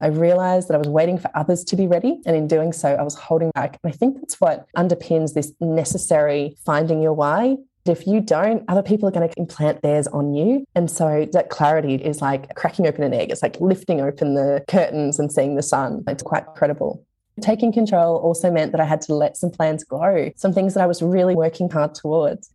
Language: English